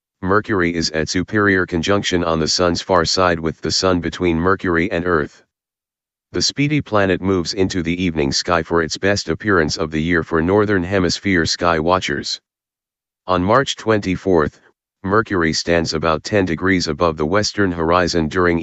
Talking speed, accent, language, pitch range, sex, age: 160 wpm, American, English, 80-100 Hz, male, 40-59